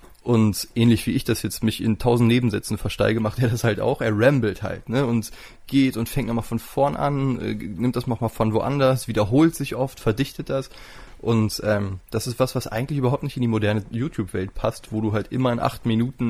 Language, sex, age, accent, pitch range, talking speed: German, male, 20-39, German, 110-130 Hz, 220 wpm